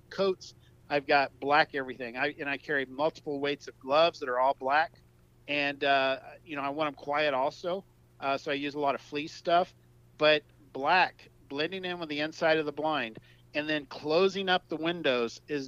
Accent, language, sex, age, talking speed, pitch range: American, English, male, 50-69, 200 wpm, 135-165 Hz